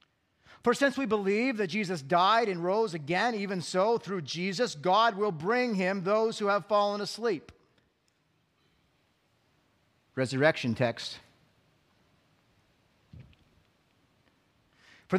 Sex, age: male, 40-59